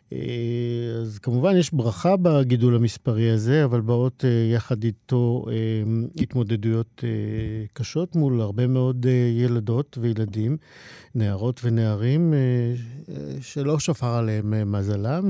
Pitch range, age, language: 110-130 Hz, 50-69, Hebrew